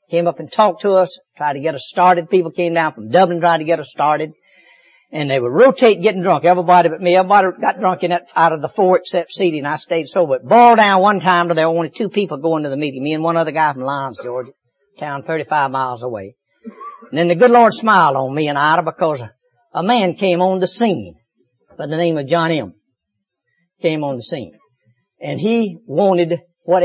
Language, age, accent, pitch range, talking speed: English, 60-79, American, 150-195 Hz, 230 wpm